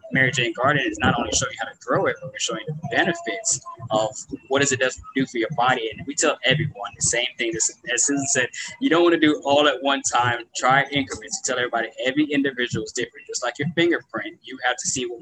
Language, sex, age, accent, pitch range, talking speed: English, male, 20-39, American, 120-155 Hz, 250 wpm